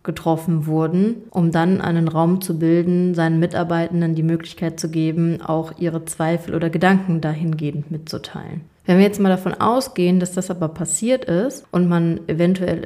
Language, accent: German, German